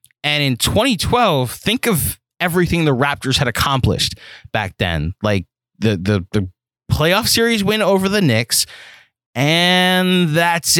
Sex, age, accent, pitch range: male, 20-39, American, 110-155 Hz